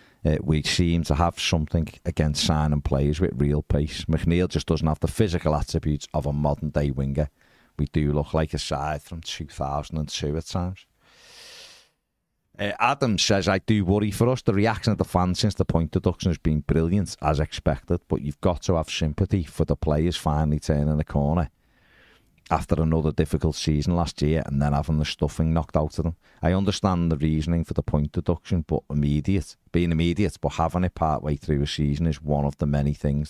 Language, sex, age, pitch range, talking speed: English, male, 40-59, 75-90 Hz, 195 wpm